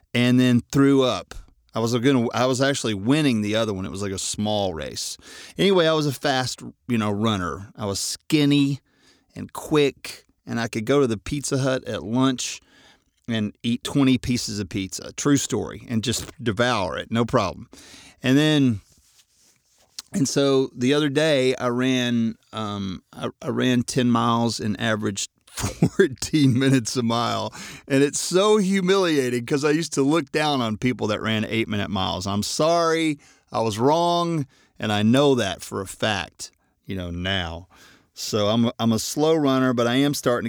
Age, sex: 40-59, male